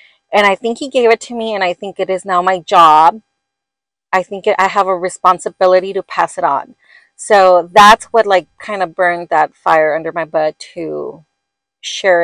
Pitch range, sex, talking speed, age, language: 180-230 Hz, female, 200 wpm, 30-49, English